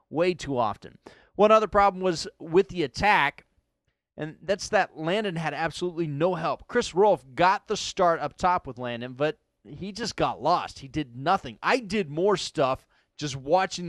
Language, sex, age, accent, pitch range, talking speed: English, male, 30-49, American, 145-215 Hz, 175 wpm